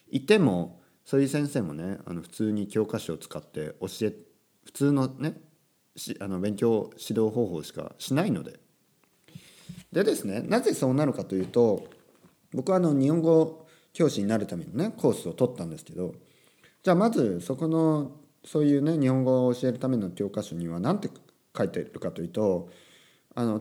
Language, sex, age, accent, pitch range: Japanese, male, 40-59, native, 105-160 Hz